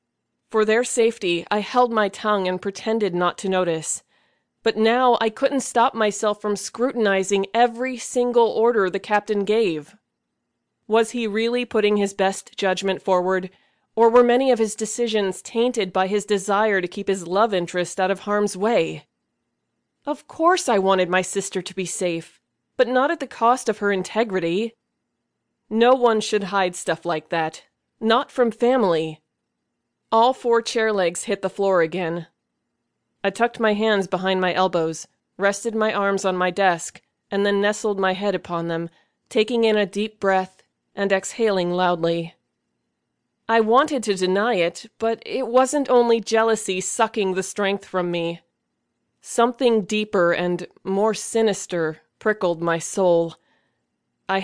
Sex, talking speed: female, 155 wpm